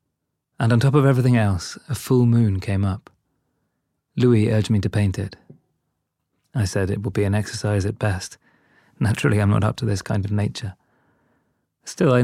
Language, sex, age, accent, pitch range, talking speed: English, male, 30-49, British, 95-110 Hz, 180 wpm